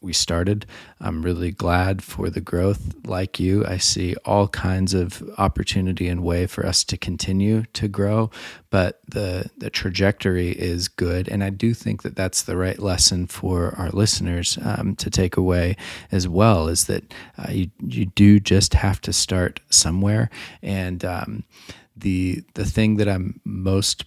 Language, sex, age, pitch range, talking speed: English, male, 30-49, 90-105 Hz, 165 wpm